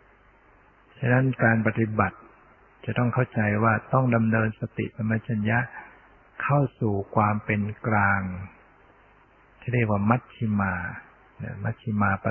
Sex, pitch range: male, 105-120 Hz